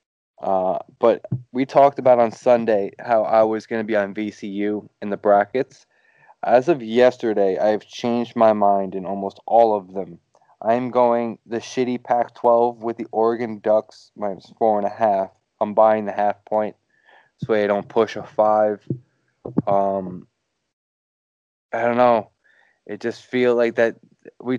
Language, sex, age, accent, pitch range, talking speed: English, male, 20-39, American, 100-120 Hz, 160 wpm